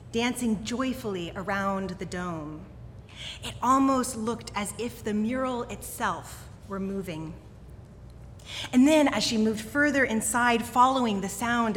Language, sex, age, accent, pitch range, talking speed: English, female, 30-49, American, 195-245 Hz, 125 wpm